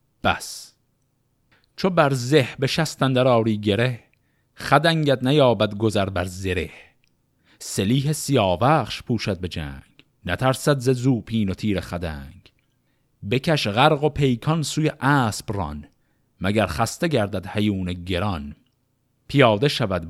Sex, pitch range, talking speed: male, 95-135 Hz, 115 wpm